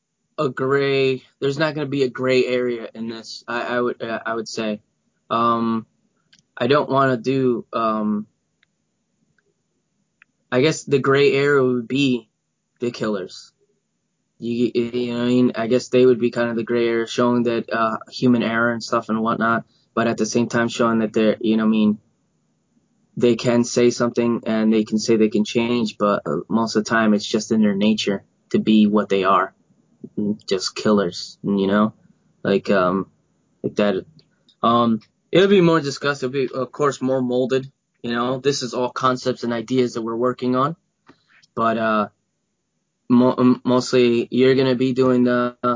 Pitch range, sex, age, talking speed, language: 110-125 Hz, male, 20-39, 185 wpm, English